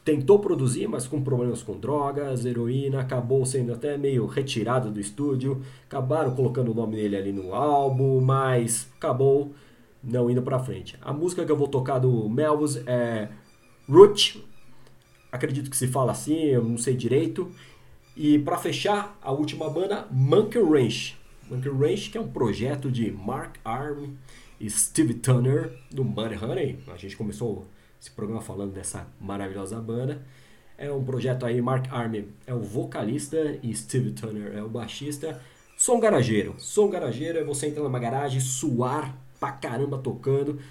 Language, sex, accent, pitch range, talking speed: Portuguese, male, Brazilian, 120-145 Hz, 160 wpm